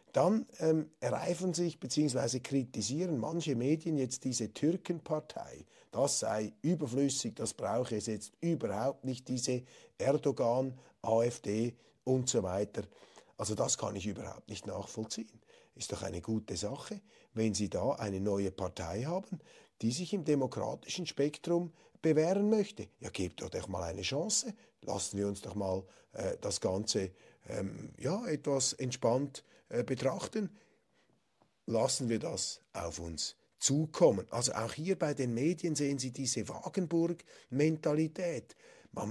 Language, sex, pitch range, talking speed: German, male, 120-165 Hz, 135 wpm